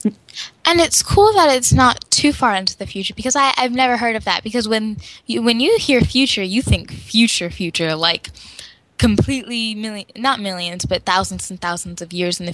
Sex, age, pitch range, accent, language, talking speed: female, 10-29, 190-250 Hz, American, English, 185 wpm